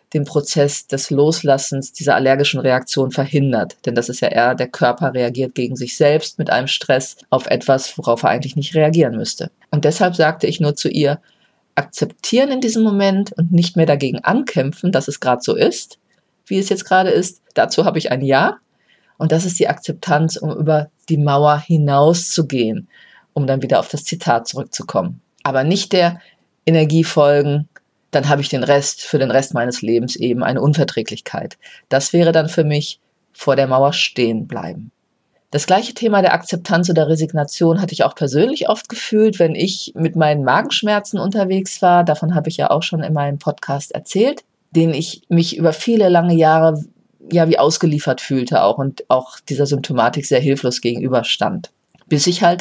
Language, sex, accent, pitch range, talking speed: German, female, German, 135-170 Hz, 180 wpm